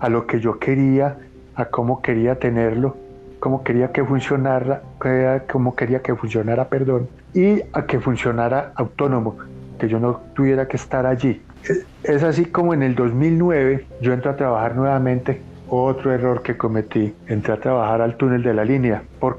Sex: male